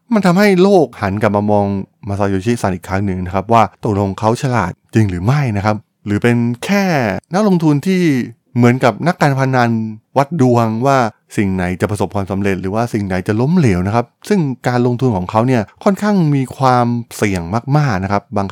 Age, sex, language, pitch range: 20-39, male, Thai, 100-130 Hz